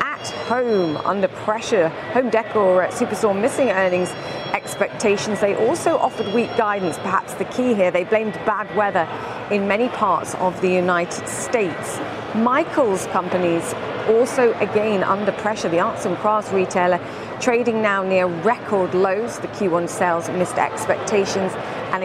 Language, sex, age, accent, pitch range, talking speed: English, female, 40-59, British, 175-210 Hz, 140 wpm